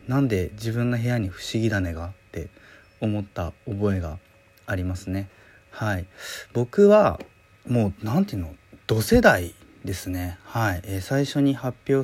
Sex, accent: male, native